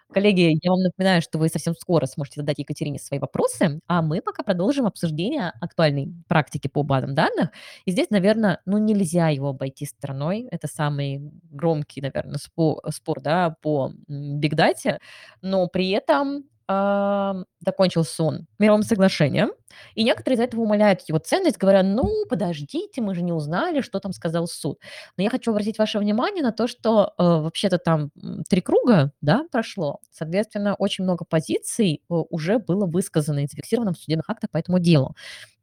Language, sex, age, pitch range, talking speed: Russian, female, 20-39, 155-200 Hz, 165 wpm